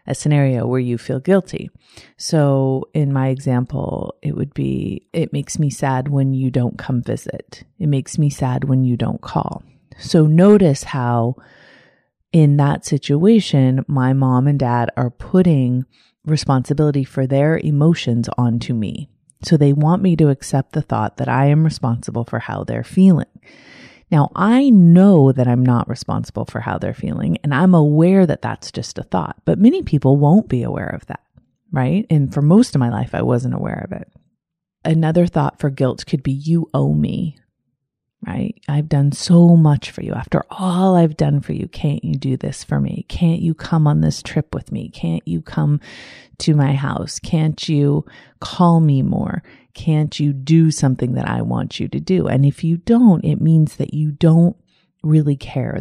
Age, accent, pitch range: 30-49, American, 130-165 Hz